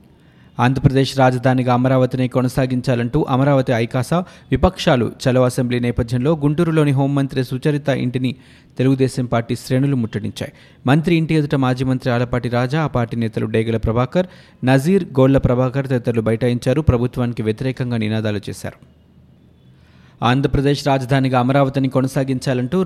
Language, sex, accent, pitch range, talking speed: Telugu, male, native, 120-140 Hz, 115 wpm